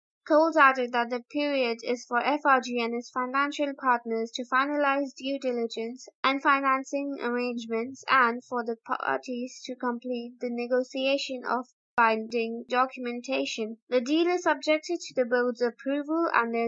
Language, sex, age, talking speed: English, female, 20-39, 145 wpm